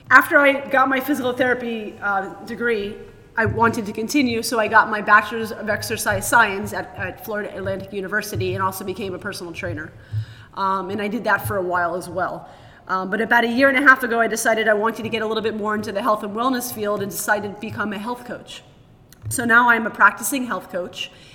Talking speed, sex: 225 wpm, female